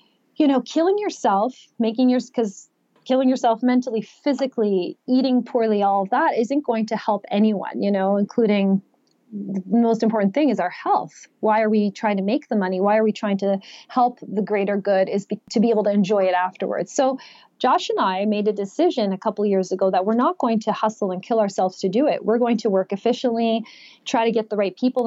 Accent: American